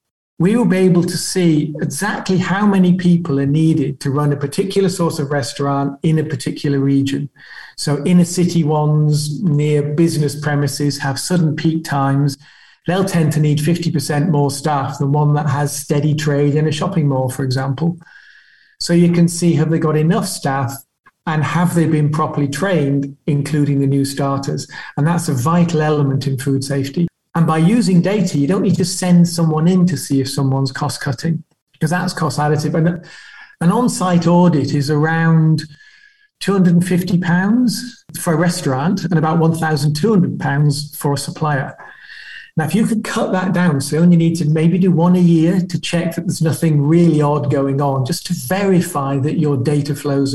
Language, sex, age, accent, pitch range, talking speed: English, male, 40-59, British, 145-175 Hz, 180 wpm